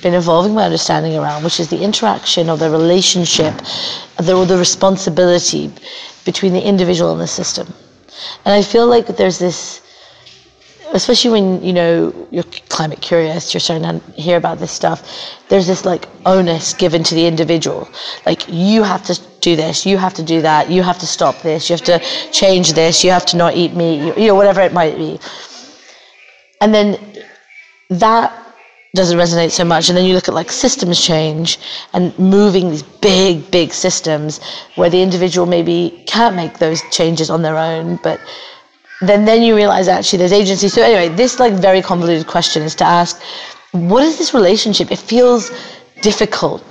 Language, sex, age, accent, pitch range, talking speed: English, female, 30-49, British, 170-200 Hz, 180 wpm